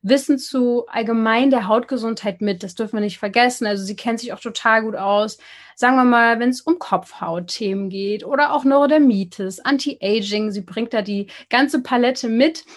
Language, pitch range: German, 210-265 Hz